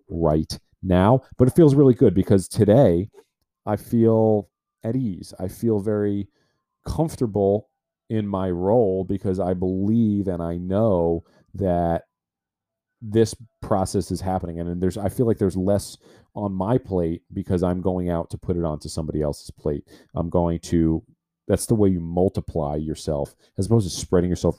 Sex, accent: male, American